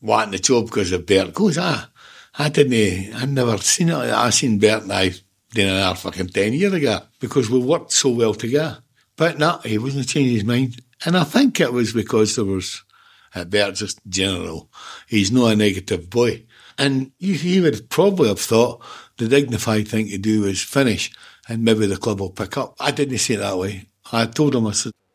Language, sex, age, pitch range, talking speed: English, male, 60-79, 105-140 Hz, 210 wpm